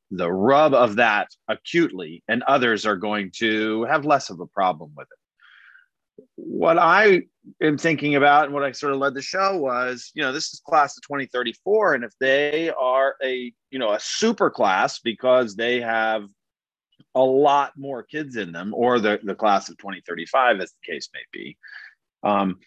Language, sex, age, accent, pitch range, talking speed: English, male, 30-49, American, 120-170 Hz, 185 wpm